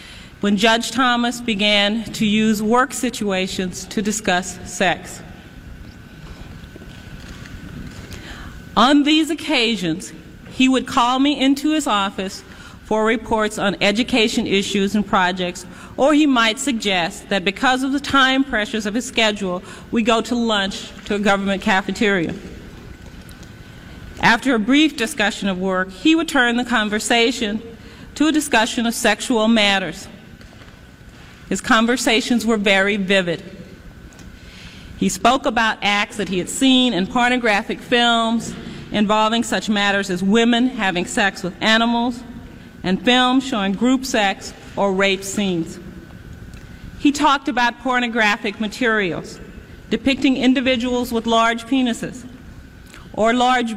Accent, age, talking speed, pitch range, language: American, 40-59, 125 wpm, 200-245 Hz, English